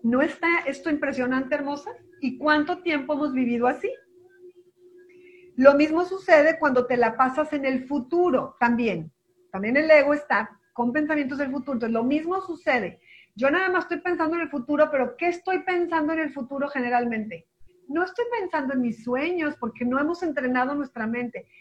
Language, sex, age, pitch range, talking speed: Spanish, female, 40-59, 240-310 Hz, 170 wpm